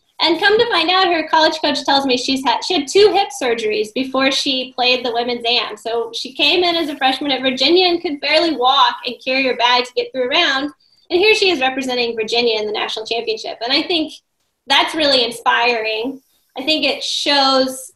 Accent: American